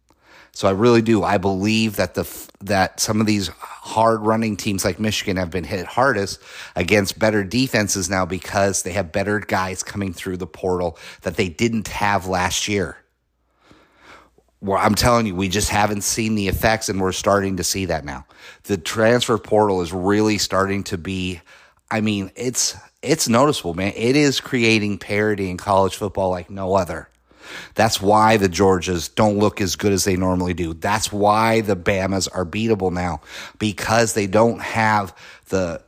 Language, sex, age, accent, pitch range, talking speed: English, male, 30-49, American, 90-110 Hz, 175 wpm